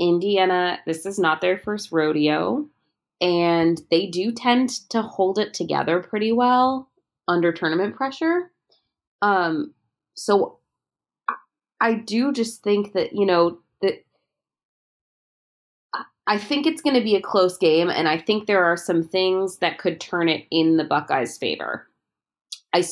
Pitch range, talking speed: 160-205 Hz, 145 wpm